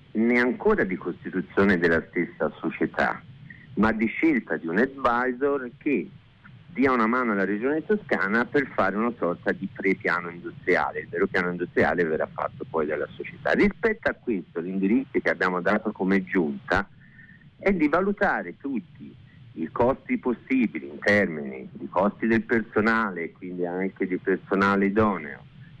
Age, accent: 50-69, native